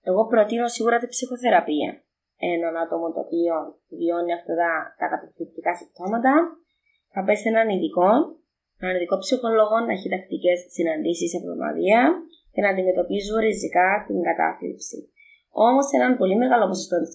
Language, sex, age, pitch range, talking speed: Greek, female, 20-39, 180-255 Hz, 135 wpm